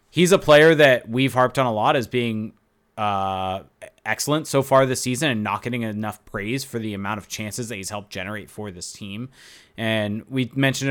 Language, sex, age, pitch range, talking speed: English, male, 20-39, 105-135 Hz, 205 wpm